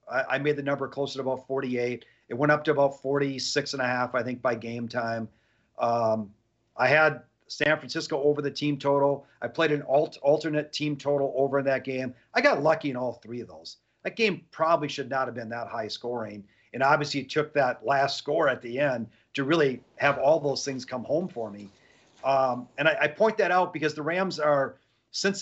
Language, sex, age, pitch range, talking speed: English, male, 40-59, 125-155 Hz, 215 wpm